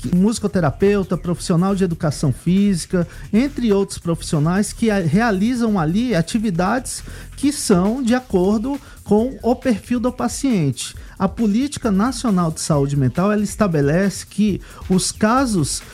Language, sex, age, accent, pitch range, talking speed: Portuguese, male, 50-69, Brazilian, 155-210 Hz, 115 wpm